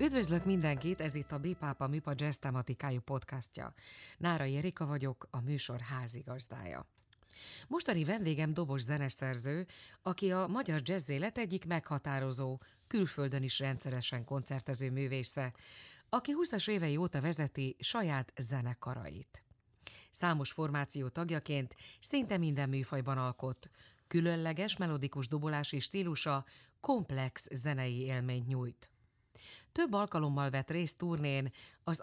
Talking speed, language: 110 wpm, Hungarian